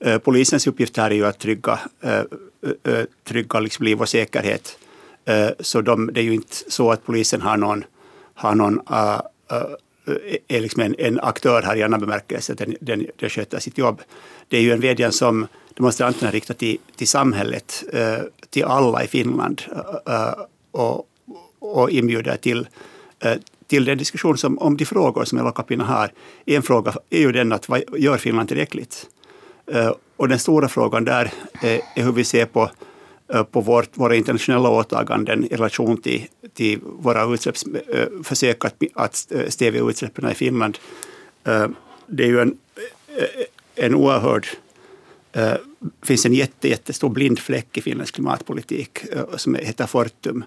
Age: 60-79